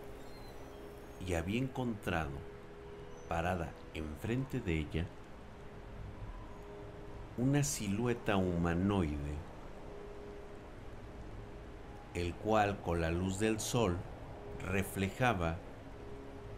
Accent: Mexican